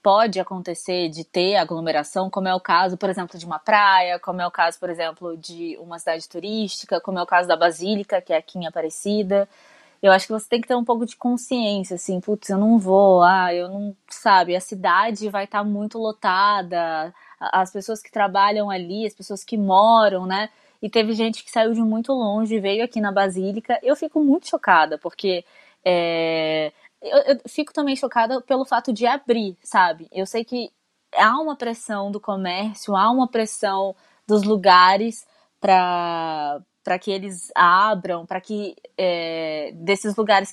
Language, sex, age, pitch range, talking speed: Portuguese, female, 20-39, 180-225 Hz, 180 wpm